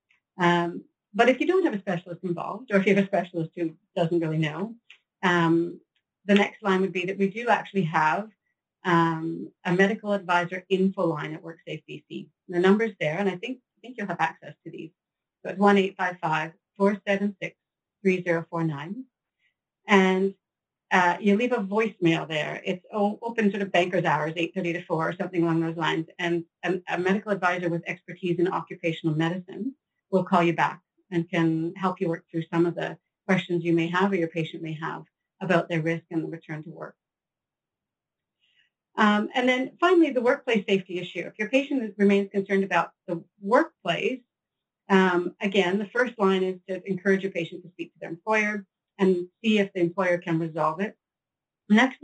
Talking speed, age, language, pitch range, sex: 180 wpm, 50-69, English, 170-200 Hz, female